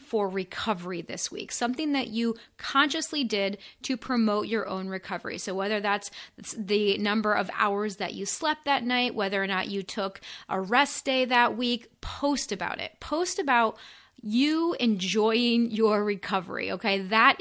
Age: 20-39